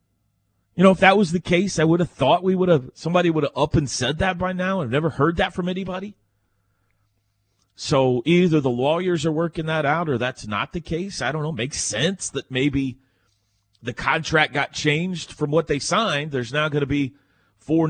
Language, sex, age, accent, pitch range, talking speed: English, male, 40-59, American, 105-155 Hz, 210 wpm